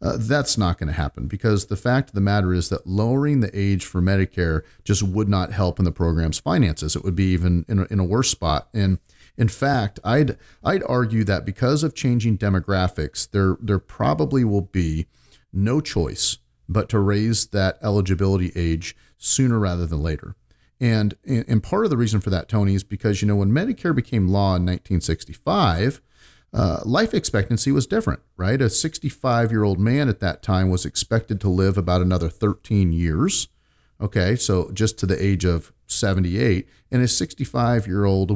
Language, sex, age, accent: English, male, 40-59, American